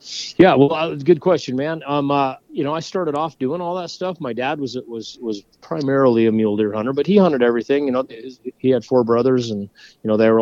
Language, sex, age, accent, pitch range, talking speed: English, male, 30-49, American, 105-135 Hz, 250 wpm